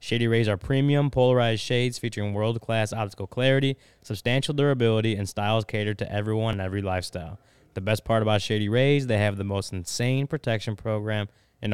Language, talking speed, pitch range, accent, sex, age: English, 175 wpm, 105-125 Hz, American, male, 20-39